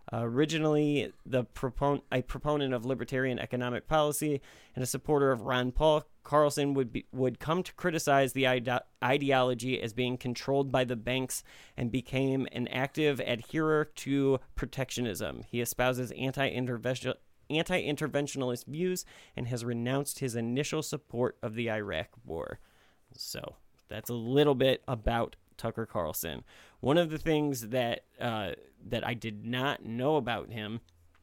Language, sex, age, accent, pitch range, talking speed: English, male, 30-49, American, 120-145 Hz, 135 wpm